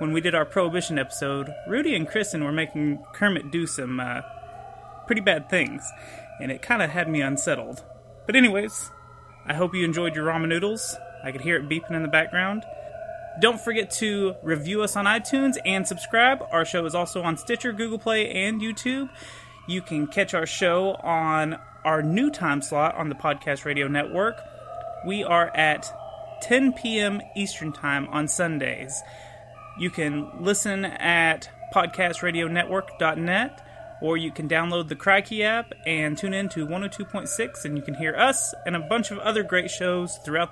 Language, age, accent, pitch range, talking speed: English, 30-49, American, 165-230 Hz, 170 wpm